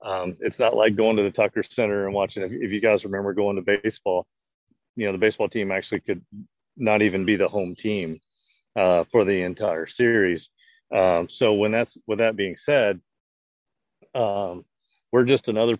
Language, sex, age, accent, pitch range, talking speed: English, male, 40-59, American, 95-115 Hz, 185 wpm